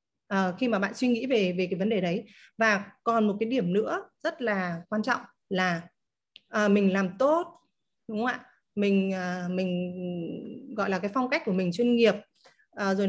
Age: 20-39